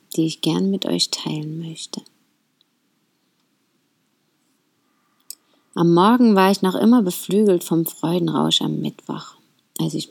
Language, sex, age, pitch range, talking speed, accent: German, female, 30-49, 155-195 Hz, 120 wpm, German